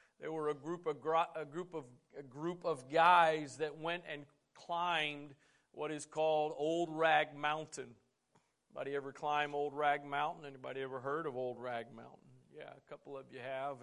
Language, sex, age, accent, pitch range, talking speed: English, male, 40-59, American, 140-160 Hz, 180 wpm